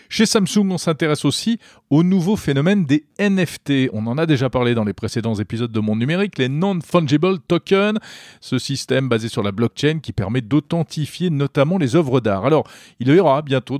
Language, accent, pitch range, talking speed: French, French, 115-160 Hz, 185 wpm